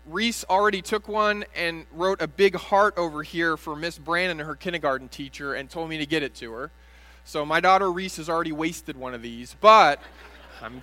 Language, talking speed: English, 210 wpm